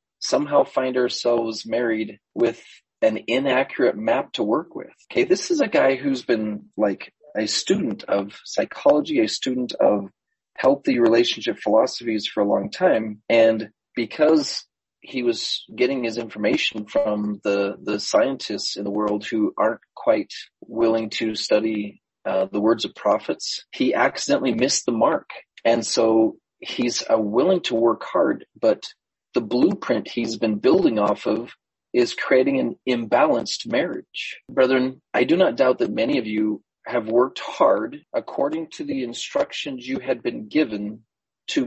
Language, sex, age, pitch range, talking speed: English, male, 30-49, 105-130 Hz, 150 wpm